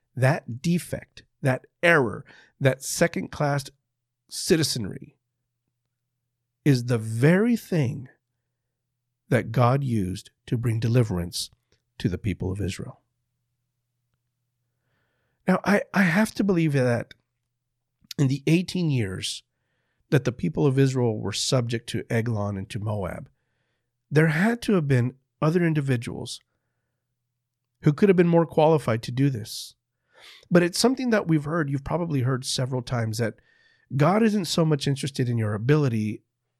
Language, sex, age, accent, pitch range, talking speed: English, male, 50-69, American, 120-150 Hz, 135 wpm